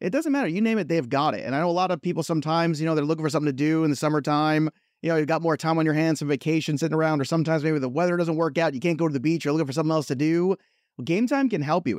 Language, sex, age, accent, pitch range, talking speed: English, male, 30-49, American, 150-195 Hz, 335 wpm